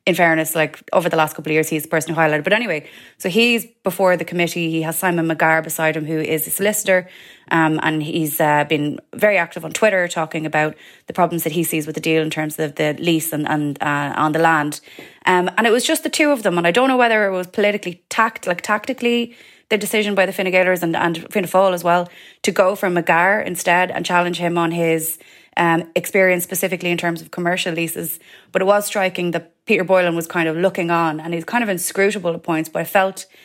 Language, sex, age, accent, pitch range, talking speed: English, female, 20-39, Irish, 155-185 Hz, 235 wpm